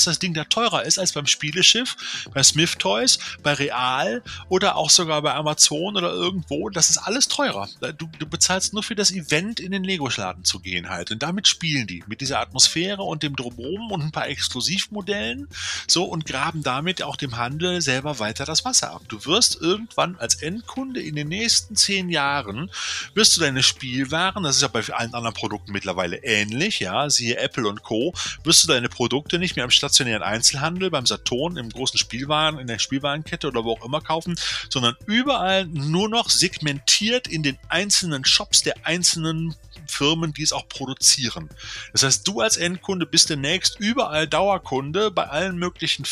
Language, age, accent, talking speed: German, 30-49, German, 185 wpm